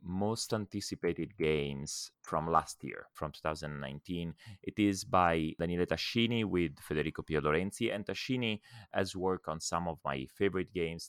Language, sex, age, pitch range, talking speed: English, male, 30-49, 80-100 Hz, 145 wpm